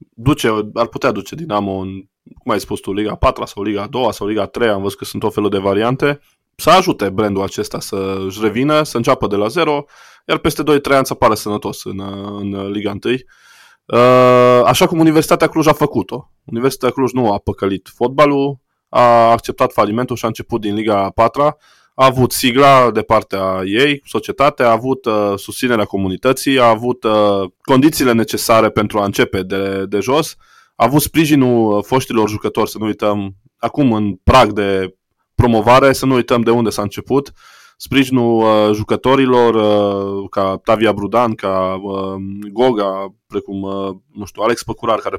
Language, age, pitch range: Romanian, 20-39, 100-120 Hz